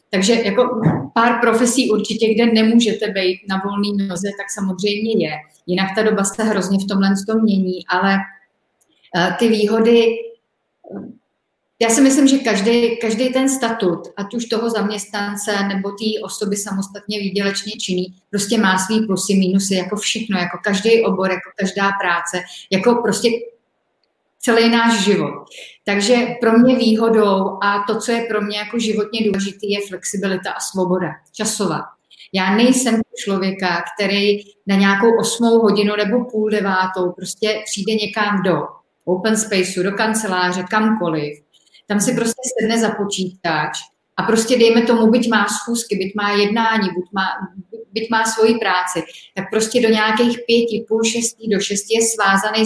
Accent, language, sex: native, Czech, female